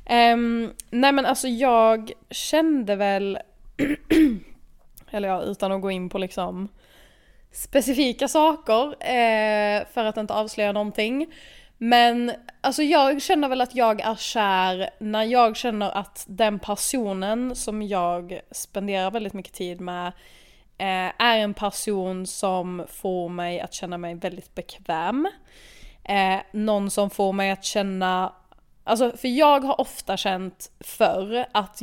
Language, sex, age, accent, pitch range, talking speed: Swedish, female, 20-39, native, 195-240 Hz, 135 wpm